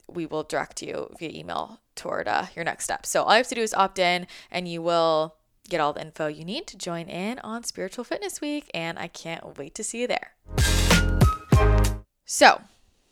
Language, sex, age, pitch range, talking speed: English, female, 20-39, 165-210 Hz, 205 wpm